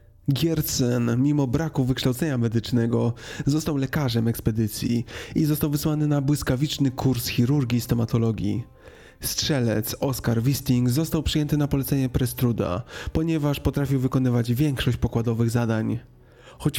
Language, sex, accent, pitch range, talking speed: Polish, male, native, 115-135 Hz, 115 wpm